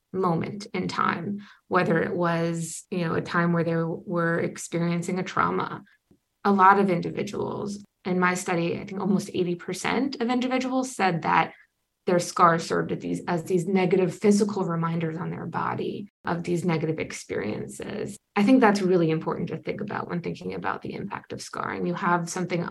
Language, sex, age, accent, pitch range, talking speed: English, female, 20-39, American, 175-205 Hz, 175 wpm